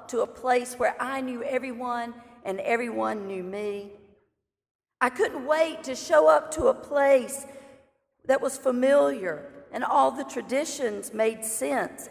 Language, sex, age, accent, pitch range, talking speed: English, female, 40-59, American, 210-275 Hz, 145 wpm